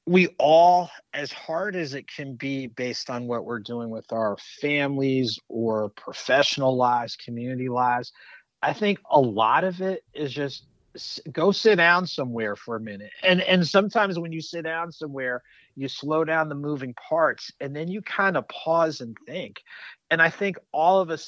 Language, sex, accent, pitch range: English, male, American, 130-170 Hz